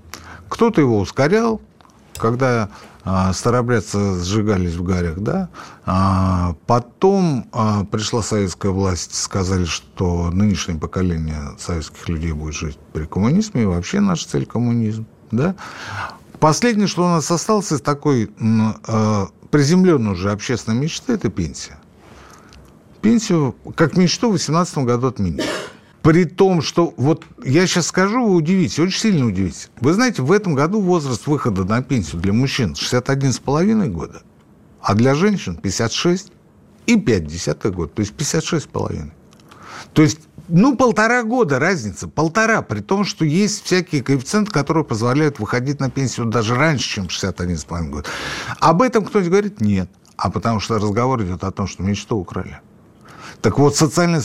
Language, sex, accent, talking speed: Russian, male, native, 140 wpm